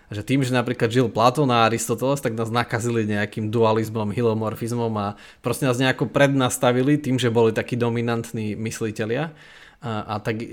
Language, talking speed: Slovak, 155 wpm